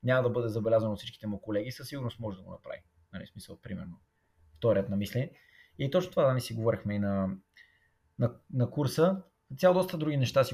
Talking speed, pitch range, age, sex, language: 220 wpm, 110-135 Hz, 20-39, male, Bulgarian